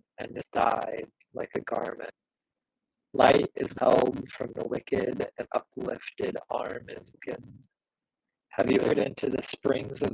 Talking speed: 140 wpm